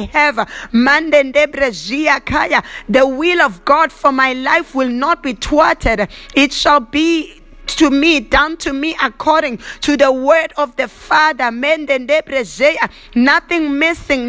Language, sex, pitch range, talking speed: English, female, 260-305 Hz, 120 wpm